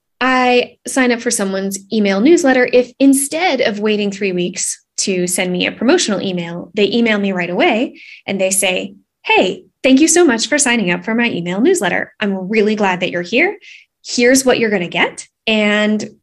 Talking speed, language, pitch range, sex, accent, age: 190 wpm, English, 195-250 Hz, female, American, 10-29